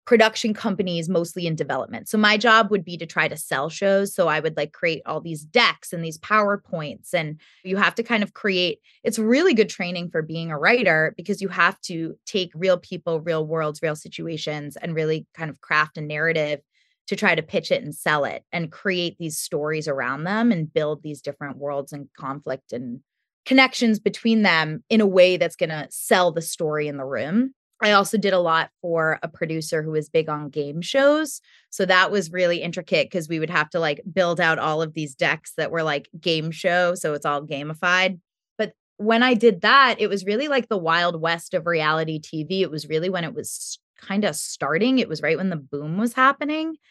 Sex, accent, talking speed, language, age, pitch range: female, American, 215 wpm, English, 20-39, 155-210 Hz